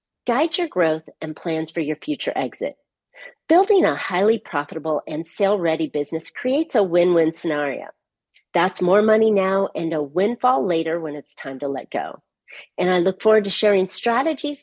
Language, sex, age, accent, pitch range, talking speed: English, female, 40-59, American, 160-250 Hz, 170 wpm